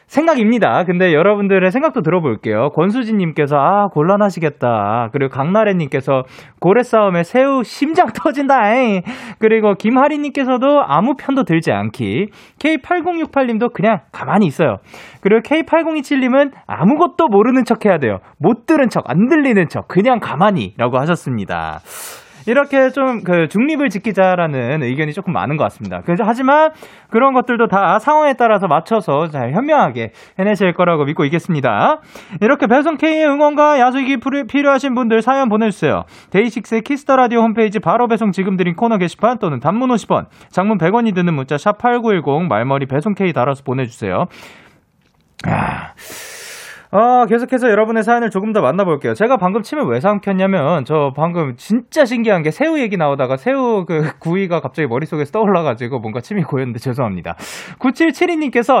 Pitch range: 155-255 Hz